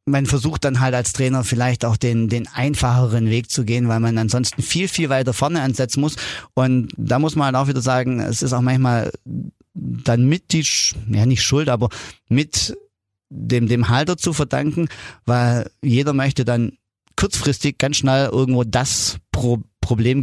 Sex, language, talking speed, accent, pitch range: male, German, 170 wpm, German, 115-135 Hz